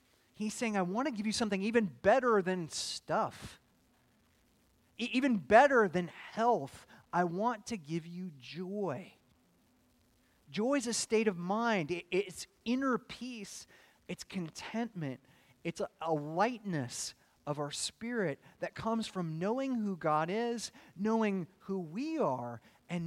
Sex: male